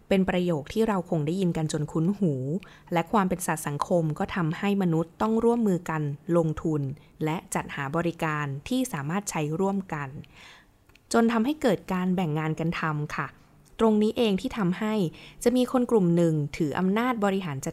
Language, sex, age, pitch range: Thai, female, 20-39, 155-205 Hz